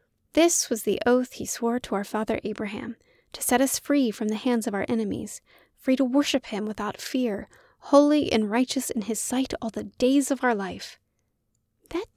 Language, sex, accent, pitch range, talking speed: English, female, American, 225-295 Hz, 190 wpm